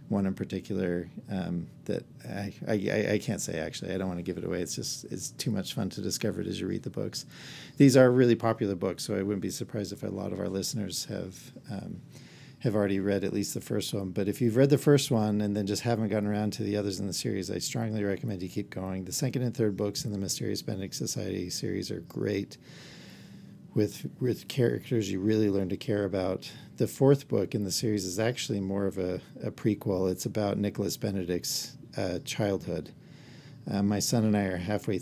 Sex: male